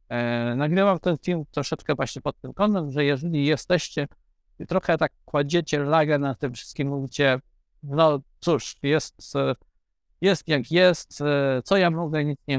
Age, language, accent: 50-69, Polish, native